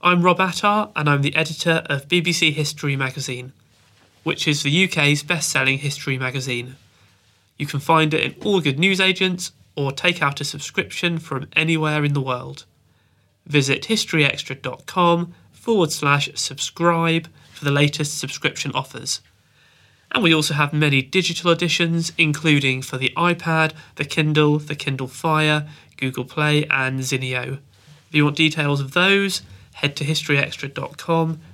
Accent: British